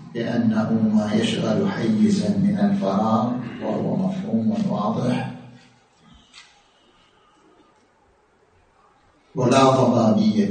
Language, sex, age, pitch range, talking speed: Arabic, male, 50-69, 125-185 Hz, 65 wpm